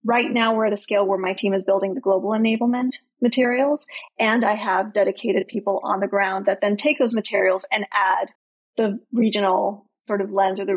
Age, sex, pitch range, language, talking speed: 30-49, female, 200-240 Hz, English, 205 wpm